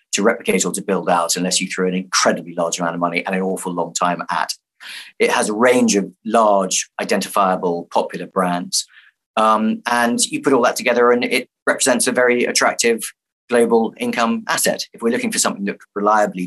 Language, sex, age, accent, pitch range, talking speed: English, male, 30-49, British, 90-110 Hz, 195 wpm